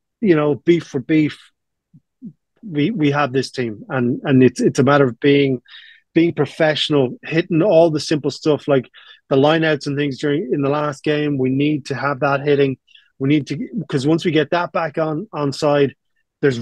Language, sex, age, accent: English, male, 30-49, Irish